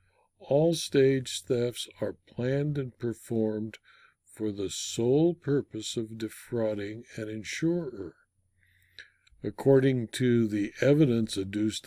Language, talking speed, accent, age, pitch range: English, 100 wpm, American, 60-79, 105-135 Hz